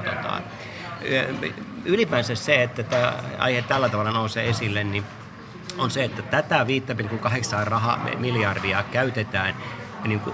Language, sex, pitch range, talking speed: Finnish, male, 105-135 Hz, 110 wpm